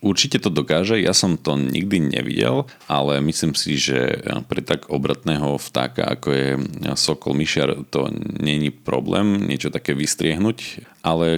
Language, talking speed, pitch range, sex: Slovak, 140 wpm, 70-80 Hz, male